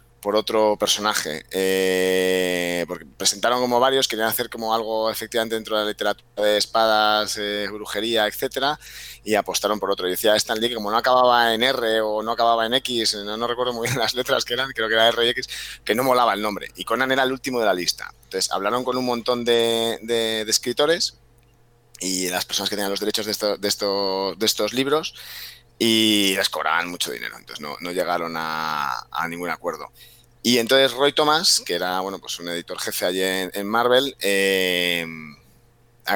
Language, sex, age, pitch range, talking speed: Spanish, male, 20-39, 100-120 Hz, 195 wpm